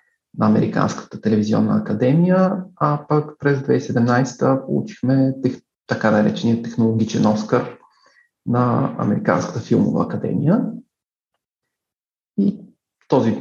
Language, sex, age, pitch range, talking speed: Bulgarian, male, 40-59, 120-170 Hz, 90 wpm